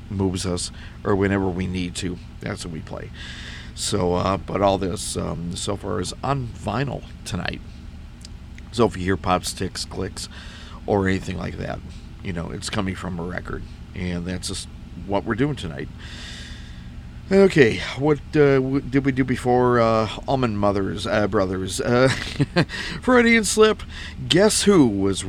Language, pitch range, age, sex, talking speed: English, 90-115 Hz, 50-69, male, 160 wpm